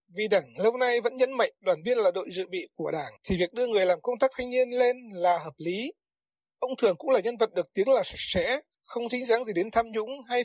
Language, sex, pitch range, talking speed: Vietnamese, male, 185-250 Hz, 270 wpm